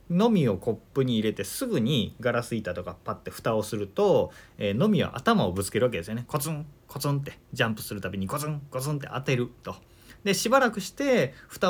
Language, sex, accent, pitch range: Japanese, male, native, 105-160 Hz